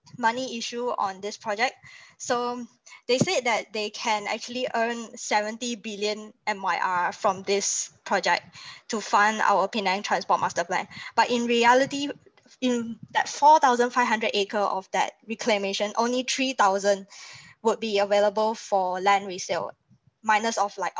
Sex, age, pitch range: female, 20-39, 200-235 Hz